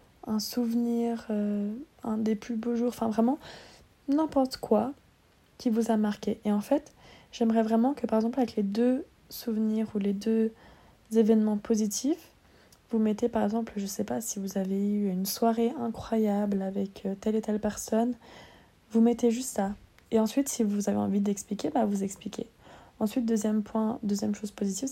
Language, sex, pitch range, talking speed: English, female, 205-235 Hz, 175 wpm